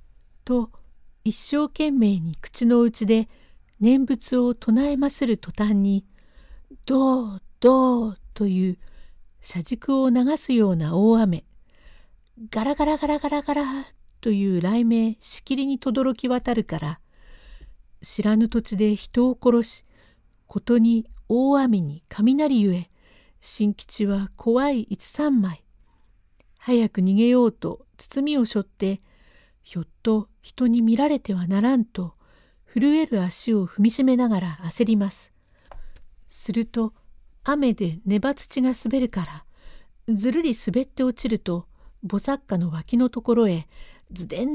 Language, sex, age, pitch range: Japanese, female, 50-69, 190-260 Hz